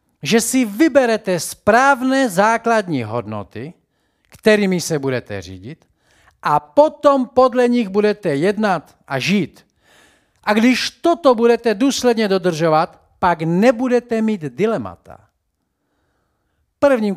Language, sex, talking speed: Slovak, male, 100 wpm